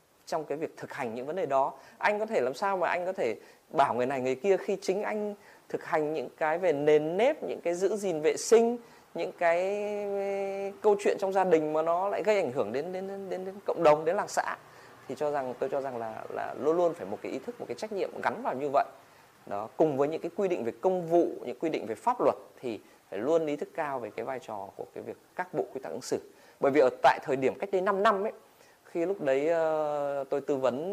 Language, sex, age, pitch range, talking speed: Vietnamese, male, 20-39, 150-210 Hz, 265 wpm